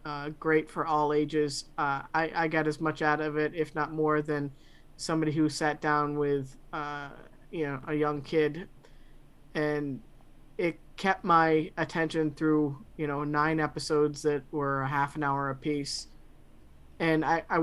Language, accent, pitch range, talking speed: English, American, 145-160 Hz, 165 wpm